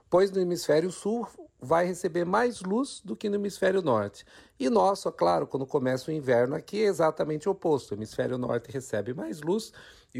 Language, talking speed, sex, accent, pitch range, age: Portuguese, 190 wpm, male, Brazilian, 130-170 Hz, 50-69